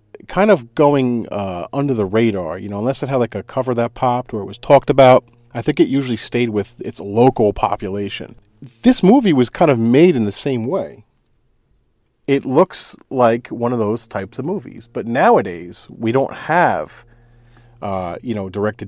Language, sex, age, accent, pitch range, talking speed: English, male, 40-59, American, 100-120 Hz, 190 wpm